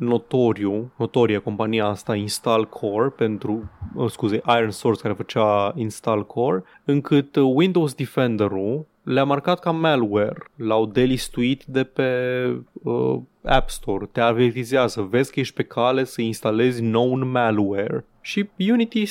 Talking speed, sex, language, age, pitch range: 130 wpm, male, Romanian, 20-39, 115-180 Hz